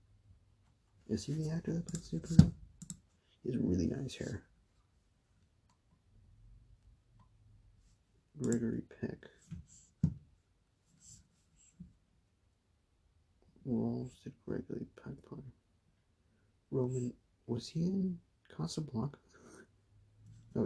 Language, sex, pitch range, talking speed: English, male, 90-120 Hz, 75 wpm